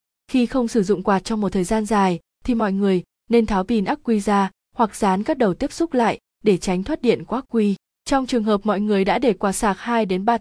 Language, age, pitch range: Vietnamese, 20-39, 190-235 Hz